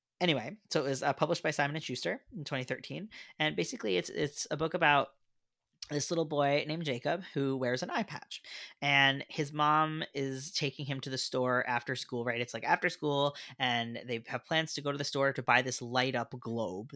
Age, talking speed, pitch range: 20-39, 210 wpm, 125-160 Hz